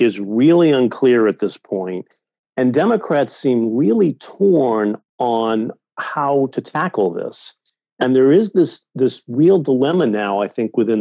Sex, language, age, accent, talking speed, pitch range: male, English, 50-69, American, 145 wpm, 110-135 Hz